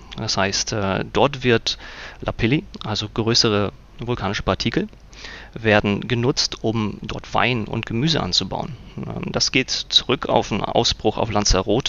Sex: male